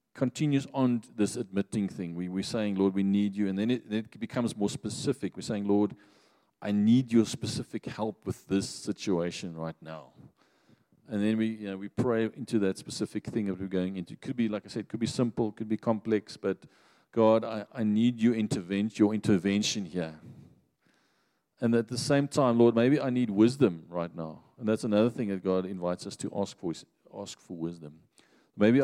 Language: English